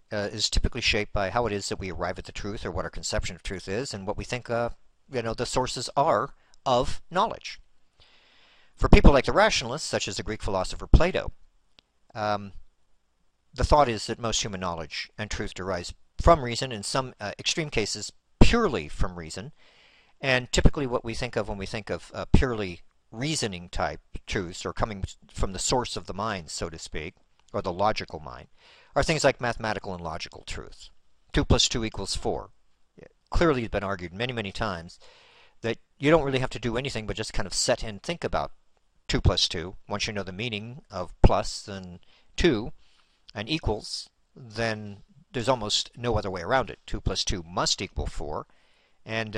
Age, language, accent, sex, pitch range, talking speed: 50-69, English, American, male, 95-120 Hz, 195 wpm